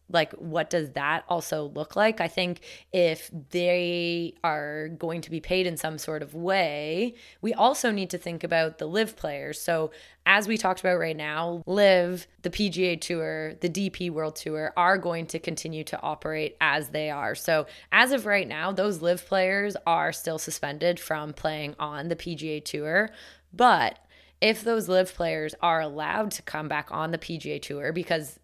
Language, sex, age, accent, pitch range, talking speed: English, female, 20-39, American, 155-180 Hz, 180 wpm